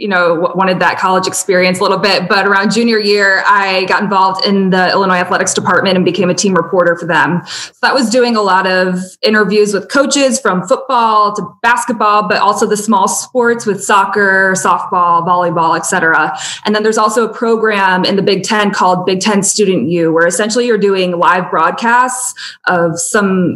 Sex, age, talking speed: female, 20-39, 195 wpm